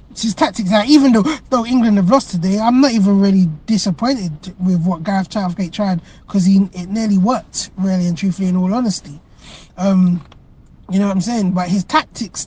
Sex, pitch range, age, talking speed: male, 185-245 Hz, 20-39, 190 wpm